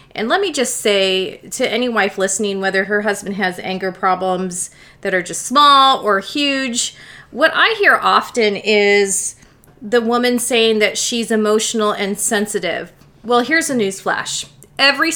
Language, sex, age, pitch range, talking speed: English, female, 30-49, 205-245 Hz, 155 wpm